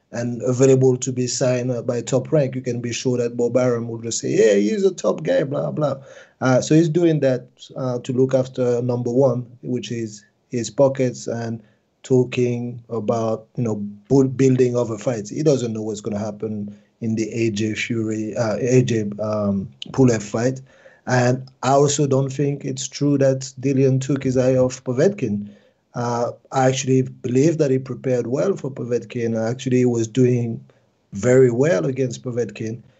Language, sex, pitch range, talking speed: English, male, 115-130 Hz, 175 wpm